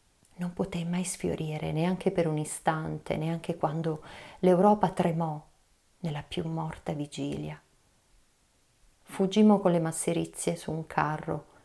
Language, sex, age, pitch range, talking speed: Italian, female, 30-49, 155-180 Hz, 120 wpm